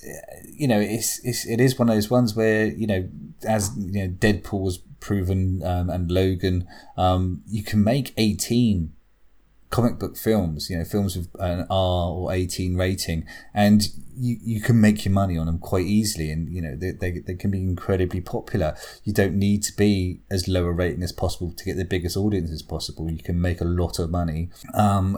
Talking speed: 205 wpm